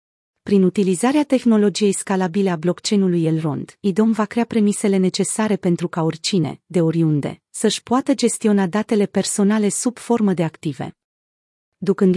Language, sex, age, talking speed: Romanian, female, 30-49, 135 wpm